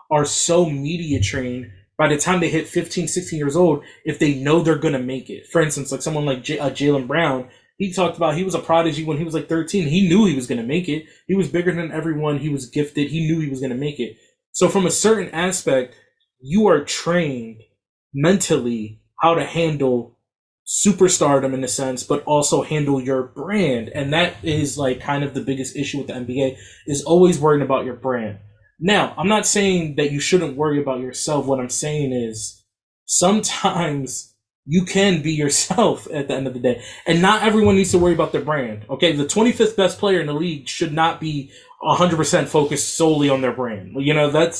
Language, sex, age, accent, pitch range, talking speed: English, male, 20-39, American, 130-165 Hz, 215 wpm